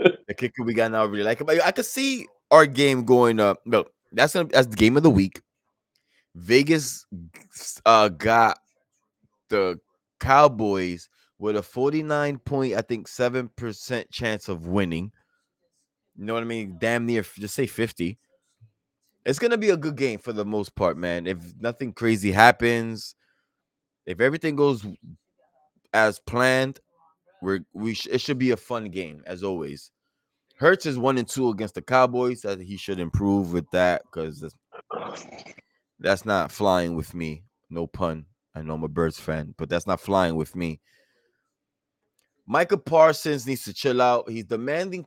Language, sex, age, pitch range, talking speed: English, male, 20-39, 95-135 Hz, 170 wpm